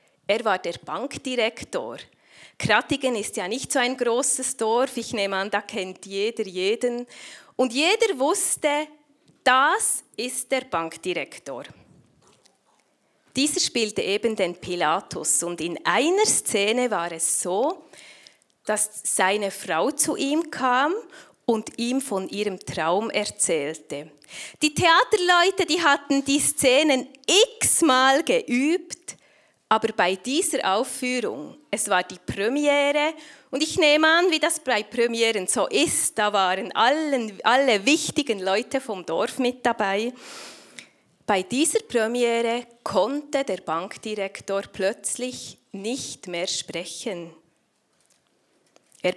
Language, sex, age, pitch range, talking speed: German, female, 30-49, 195-285 Hz, 120 wpm